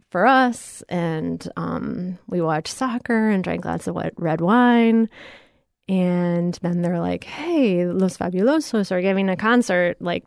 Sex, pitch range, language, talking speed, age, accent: female, 185-245 Hz, English, 145 wpm, 30-49, American